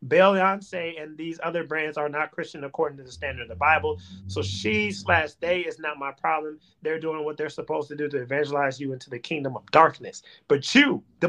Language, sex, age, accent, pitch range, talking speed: English, male, 30-49, American, 145-190 Hz, 220 wpm